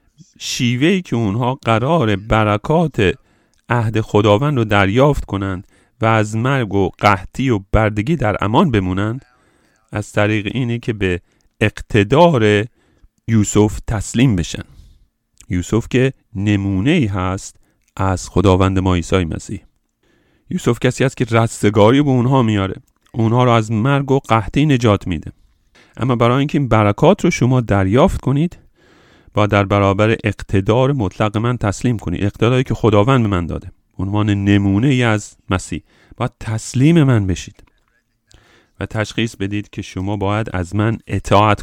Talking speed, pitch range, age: 135 wpm, 100-135 Hz, 40-59